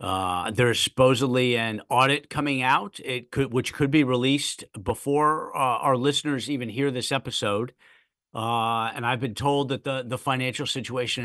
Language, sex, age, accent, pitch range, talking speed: English, male, 50-69, American, 115-140 Hz, 165 wpm